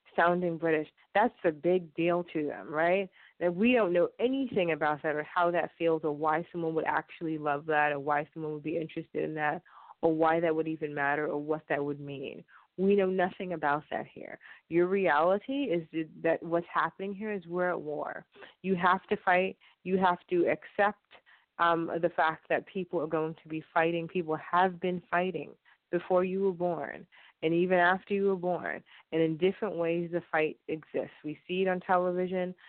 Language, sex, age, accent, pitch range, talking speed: English, female, 20-39, American, 160-180 Hz, 195 wpm